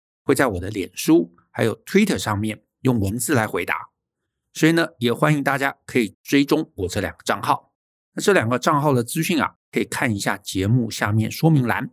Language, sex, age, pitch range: Chinese, male, 50-69, 110-155 Hz